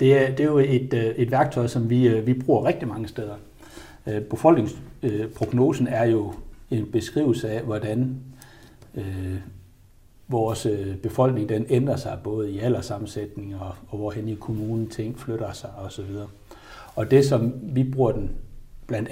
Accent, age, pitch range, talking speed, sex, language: native, 60-79, 105-130 Hz, 150 wpm, male, Danish